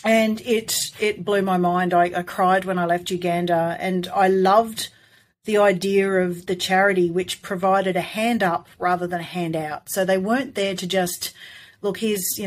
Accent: Australian